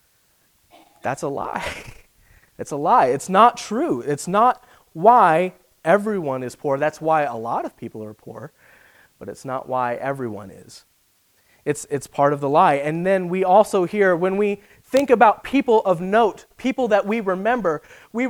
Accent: American